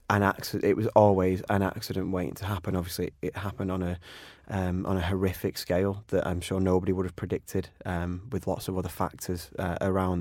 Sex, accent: male, British